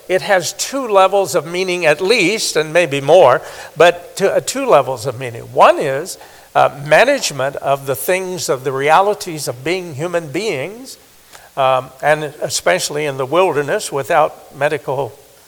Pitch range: 140-185 Hz